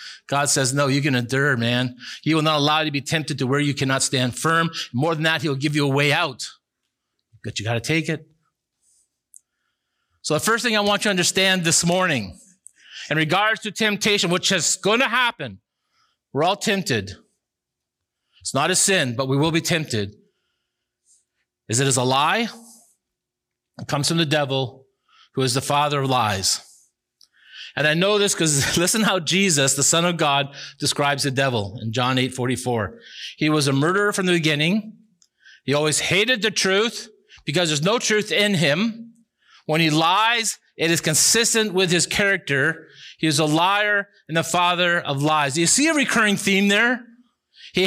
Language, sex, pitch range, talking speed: English, male, 140-210 Hz, 185 wpm